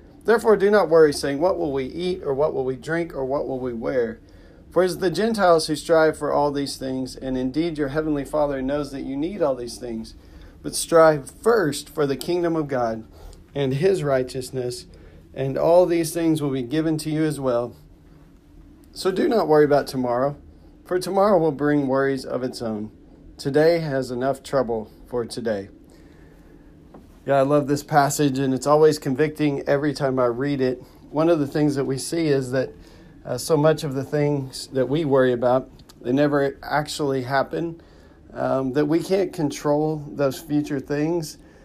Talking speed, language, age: 185 wpm, English, 40-59